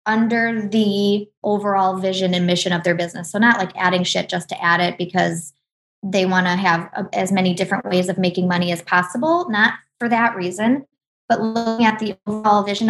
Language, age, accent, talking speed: English, 20-39, American, 195 wpm